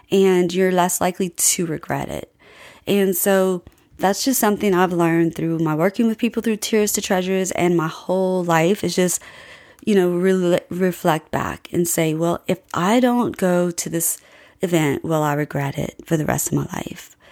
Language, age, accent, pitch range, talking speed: English, 30-49, American, 165-205 Hz, 185 wpm